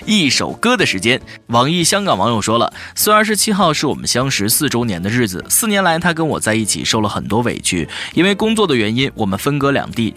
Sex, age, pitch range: male, 20-39, 105-150 Hz